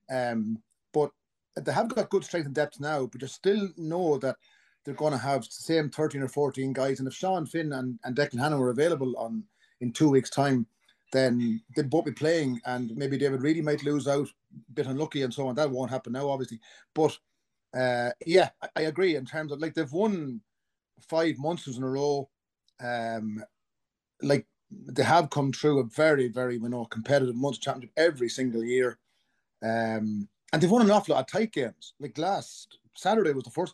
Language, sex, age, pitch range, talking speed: English, male, 30-49, 125-155 Hz, 205 wpm